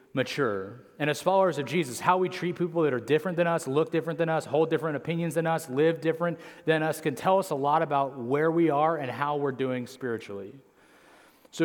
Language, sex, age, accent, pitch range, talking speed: English, male, 30-49, American, 130-165 Hz, 220 wpm